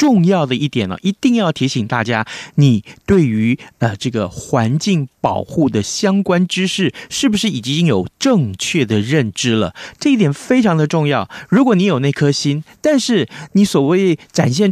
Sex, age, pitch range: male, 30-49, 115-195 Hz